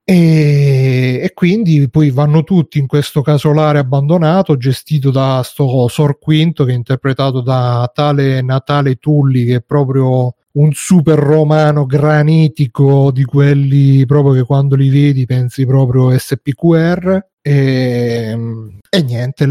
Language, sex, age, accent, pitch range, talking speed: Italian, male, 30-49, native, 130-155 Hz, 125 wpm